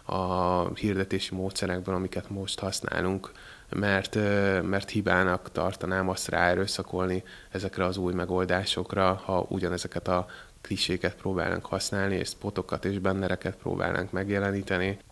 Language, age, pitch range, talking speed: Hungarian, 20-39, 90-100 Hz, 110 wpm